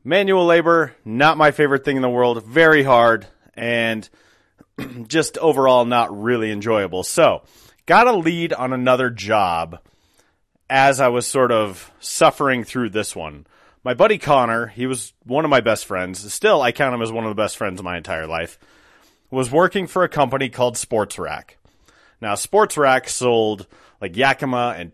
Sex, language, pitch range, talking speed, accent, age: male, English, 100-135 Hz, 175 wpm, American, 30-49